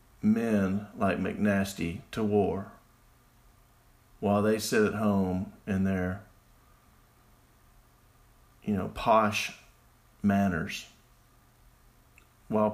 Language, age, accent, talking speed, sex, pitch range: English, 40-59, American, 80 wpm, male, 95-120 Hz